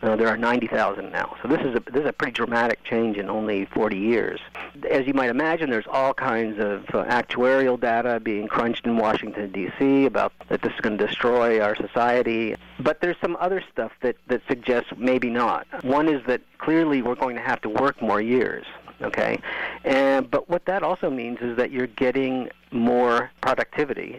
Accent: American